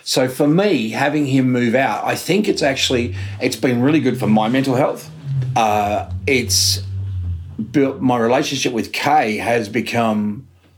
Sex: male